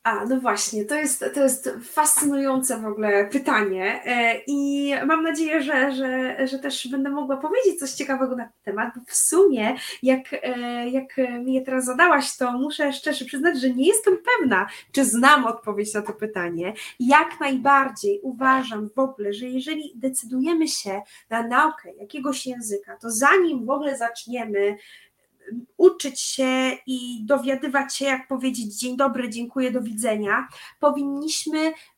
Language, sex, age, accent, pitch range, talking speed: Polish, female, 20-39, native, 230-290 Hz, 150 wpm